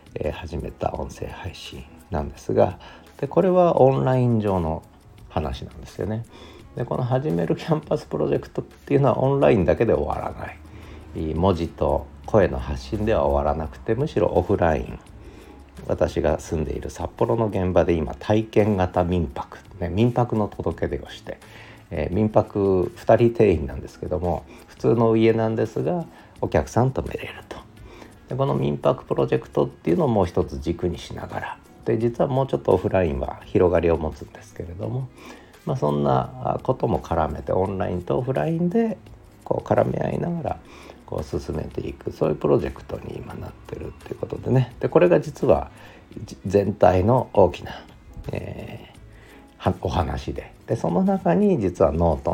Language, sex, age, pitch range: Japanese, male, 50-69, 85-115 Hz